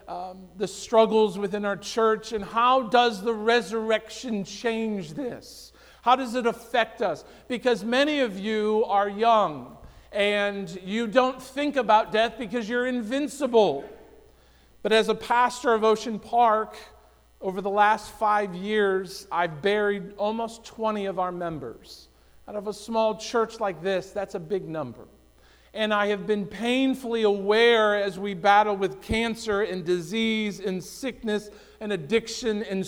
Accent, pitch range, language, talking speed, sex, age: American, 205-235 Hz, English, 150 wpm, male, 50-69